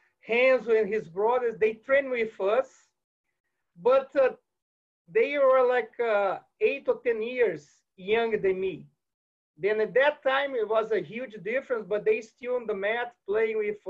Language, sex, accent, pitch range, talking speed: English, male, Brazilian, 205-270 Hz, 165 wpm